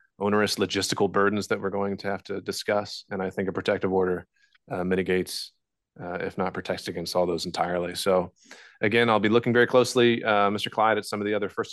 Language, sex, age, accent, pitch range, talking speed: English, male, 30-49, American, 95-110 Hz, 215 wpm